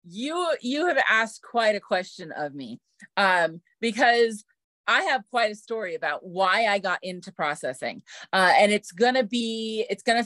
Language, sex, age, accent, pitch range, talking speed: English, female, 30-49, American, 180-250 Hz, 170 wpm